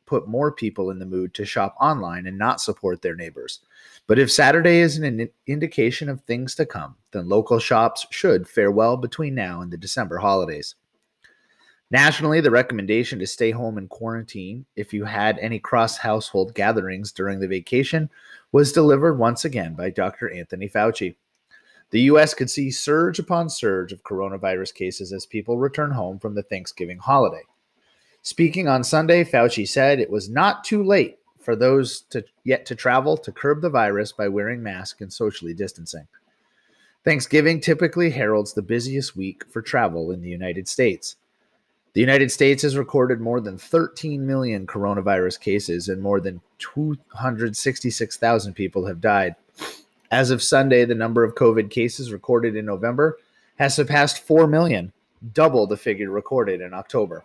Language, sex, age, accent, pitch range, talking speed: English, male, 30-49, American, 100-145 Hz, 160 wpm